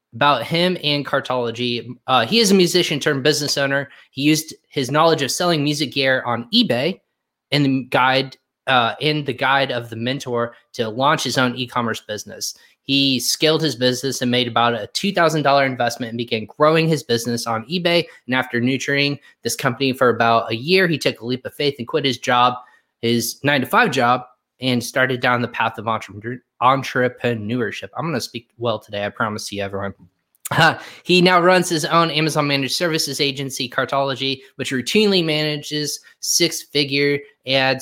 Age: 20-39